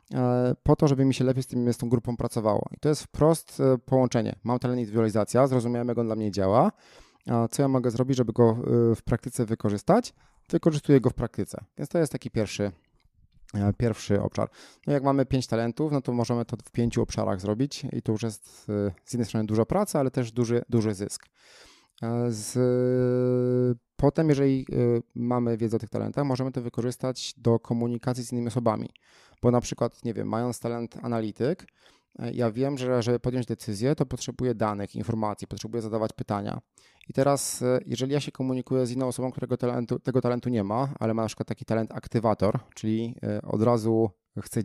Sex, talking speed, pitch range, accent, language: male, 185 wpm, 110-130 Hz, native, Polish